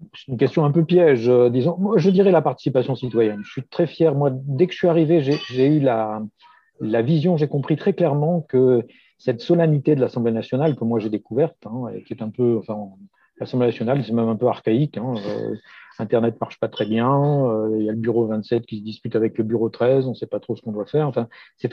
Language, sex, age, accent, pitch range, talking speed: French, male, 50-69, French, 120-155 Hz, 250 wpm